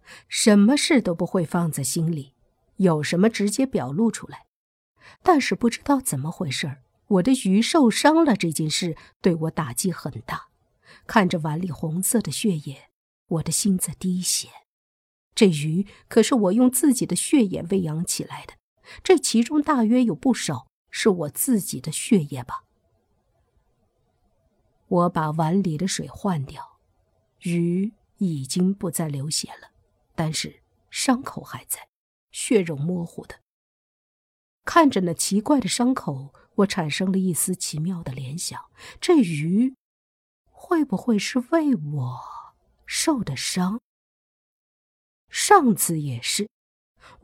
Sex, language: female, Chinese